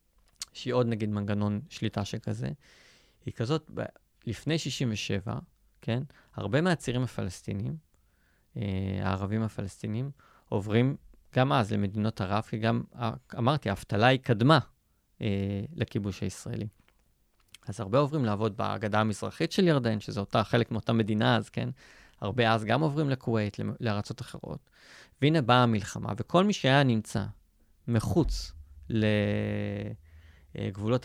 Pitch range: 105-125 Hz